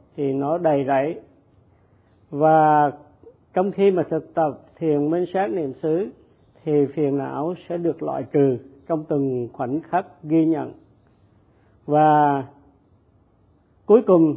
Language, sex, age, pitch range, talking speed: Vietnamese, male, 50-69, 130-165 Hz, 130 wpm